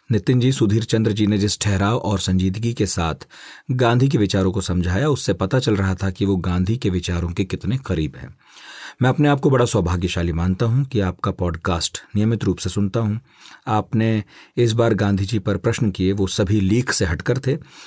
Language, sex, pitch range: Hindi, male, 95-115 Hz